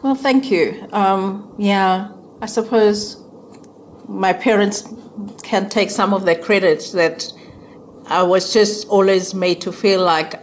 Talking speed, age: 140 wpm, 50-69